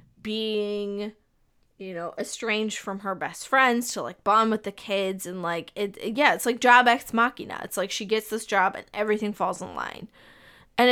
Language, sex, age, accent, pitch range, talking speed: English, female, 10-29, American, 205-245 Hz, 200 wpm